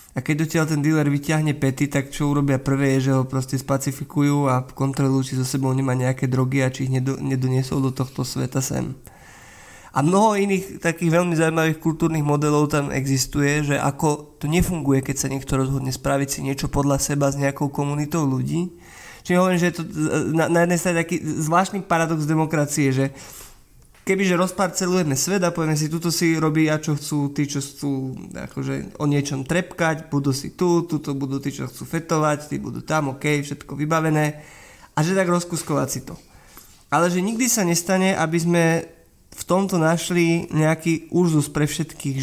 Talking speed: 180 wpm